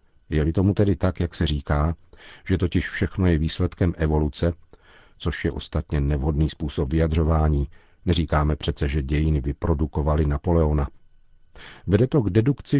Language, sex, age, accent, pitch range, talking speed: Czech, male, 50-69, native, 80-95 Hz, 135 wpm